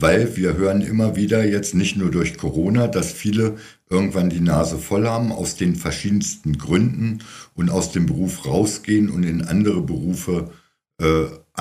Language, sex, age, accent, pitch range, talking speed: German, male, 60-79, German, 80-110 Hz, 160 wpm